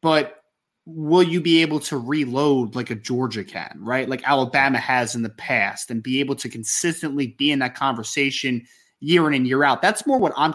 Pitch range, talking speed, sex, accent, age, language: 125-170 Hz, 205 wpm, male, American, 20-39, English